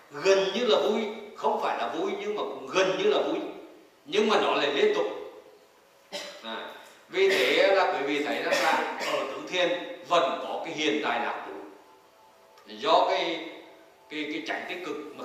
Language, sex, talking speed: Vietnamese, male, 190 wpm